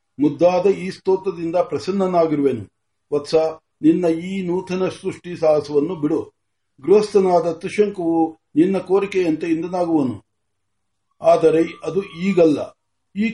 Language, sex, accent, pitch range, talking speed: Marathi, male, native, 150-195 Hz, 45 wpm